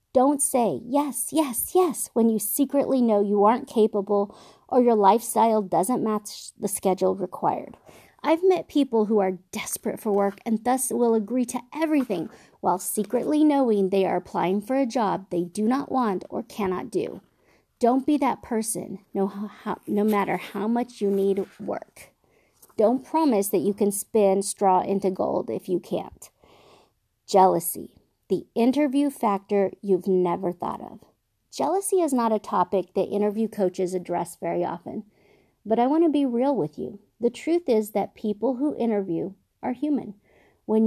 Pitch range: 195-255 Hz